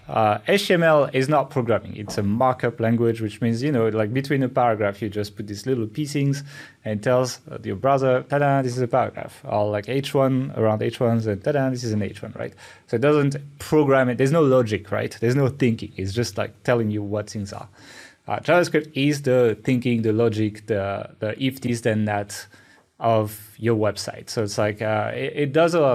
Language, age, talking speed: English, 30-49, 205 wpm